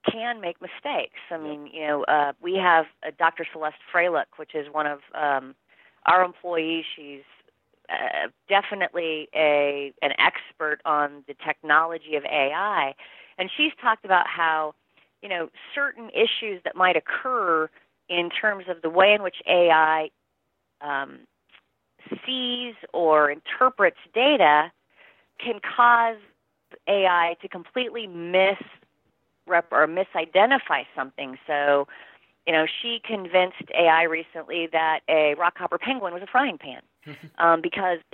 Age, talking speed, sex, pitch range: 30-49, 130 wpm, female, 160-220 Hz